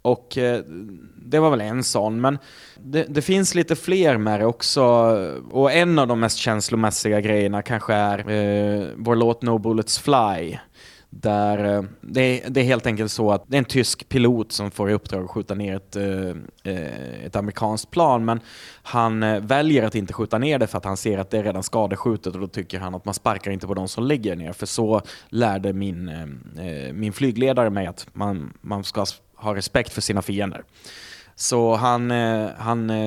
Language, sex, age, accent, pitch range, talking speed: Swedish, male, 20-39, native, 100-120 Hz, 195 wpm